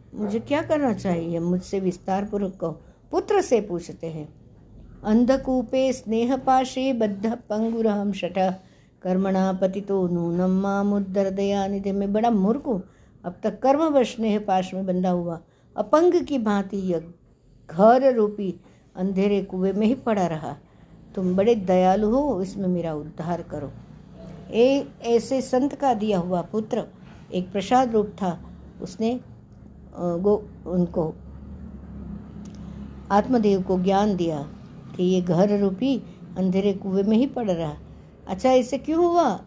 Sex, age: female, 60-79